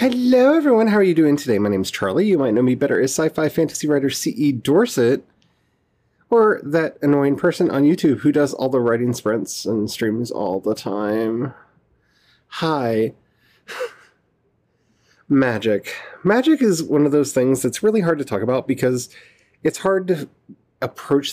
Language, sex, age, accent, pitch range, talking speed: English, male, 30-49, American, 120-180 Hz, 165 wpm